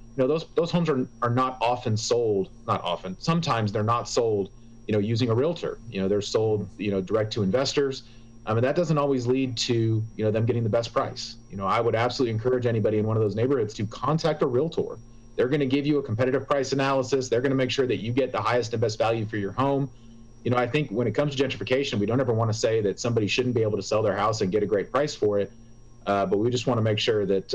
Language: English